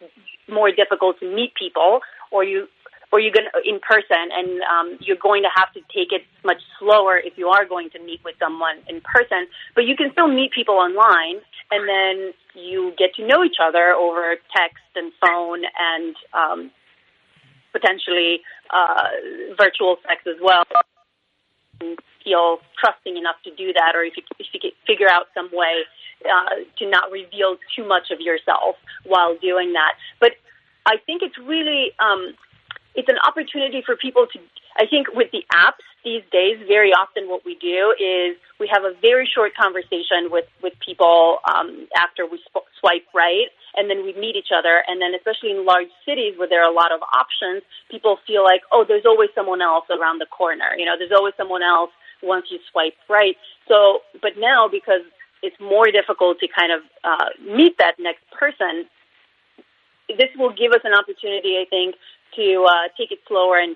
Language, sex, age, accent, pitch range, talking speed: Spanish, female, 30-49, American, 175-235 Hz, 180 wpm